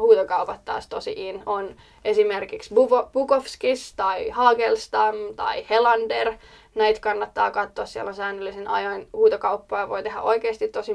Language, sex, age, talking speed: Finnish, female, 20-39, 120 wpm